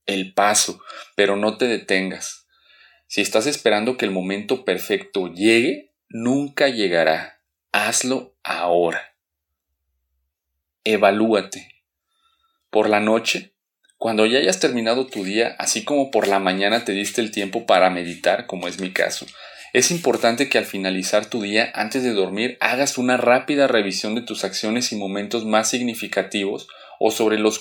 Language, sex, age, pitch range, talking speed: Spanish, male, 30-49, 100-120 Hz, 145 wpm